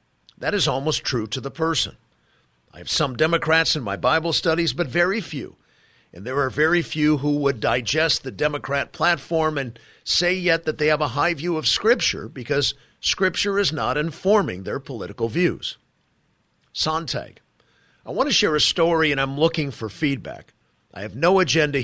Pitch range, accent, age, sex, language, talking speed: 135-165 Hz, American, 50-69, male, English, 175 wpm